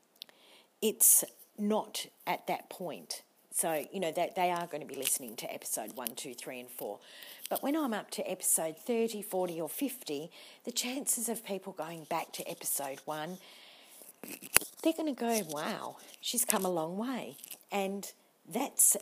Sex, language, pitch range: female, English, 170-230 Hz